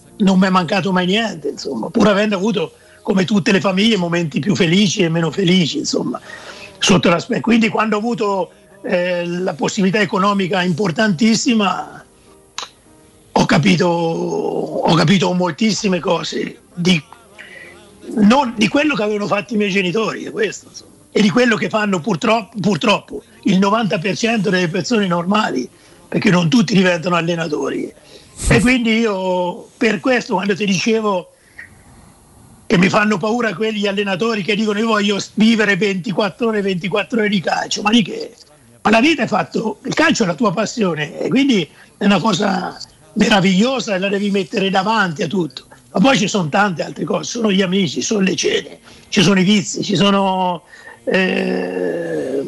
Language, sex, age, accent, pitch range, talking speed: Italian, male, 50-69, native, 185-220 Hz, 155 wpm